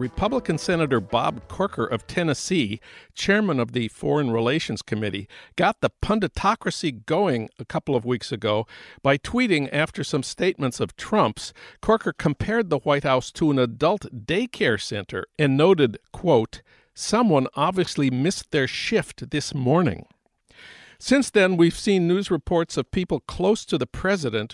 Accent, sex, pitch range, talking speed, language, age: American, male, 125-180 Hz, 145 wpm, English, 50-69